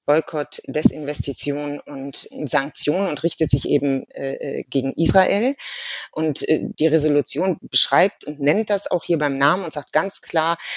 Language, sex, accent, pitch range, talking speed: German, female, German, 150-185 Hz, 150 wpm